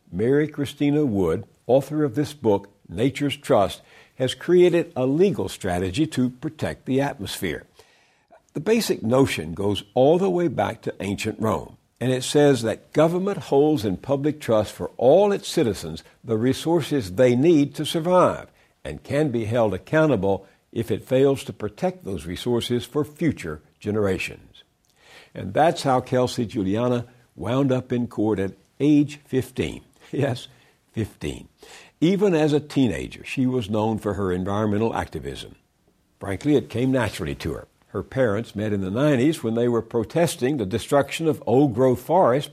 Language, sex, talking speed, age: English, male, 155 wpm, 60-79